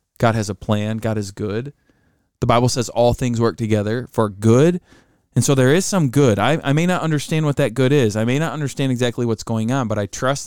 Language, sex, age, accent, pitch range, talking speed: English, male, 20-39, American, 105-135 Hz, 240 wpm